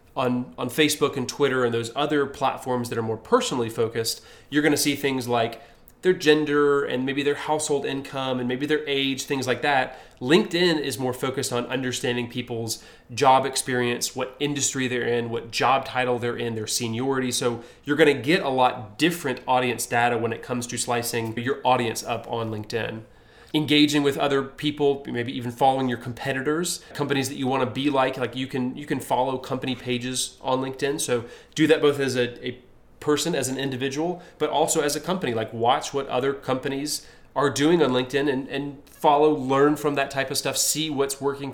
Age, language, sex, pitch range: 30-49, English, male, 125-145 Hz